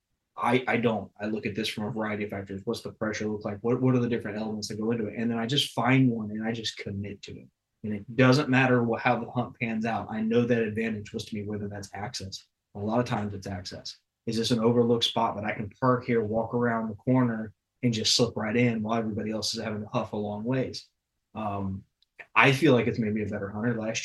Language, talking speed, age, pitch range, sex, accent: English, 260 wpm, 20-39, 105-120 Hz, male, American